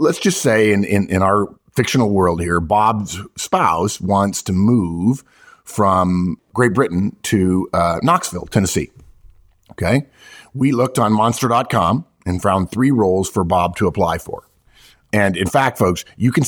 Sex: male